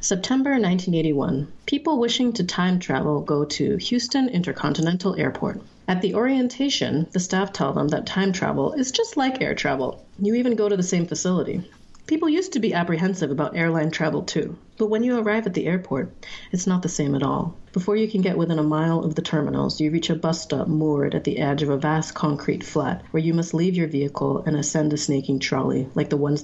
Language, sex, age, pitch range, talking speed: English, female, 30-49, 150-195 Hz, 215 wpm